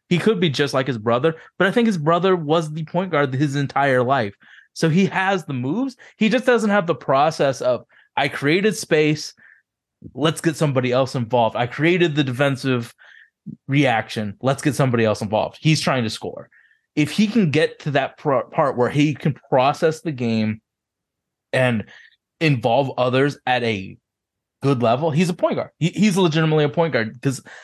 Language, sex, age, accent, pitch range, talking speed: English, male, 20-39, American, 125-165 Hz, 180 wpm